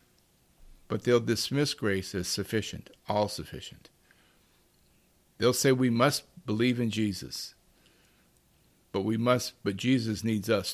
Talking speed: 125 wpm